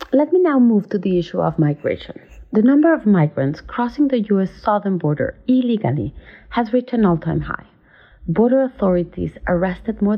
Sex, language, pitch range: female, English, 175-245 Hz